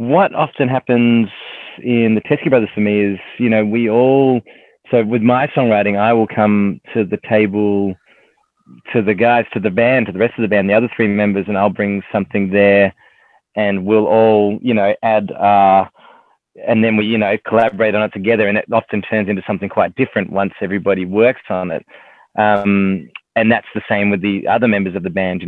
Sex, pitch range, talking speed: male, 100-115 Hz, 205 wpm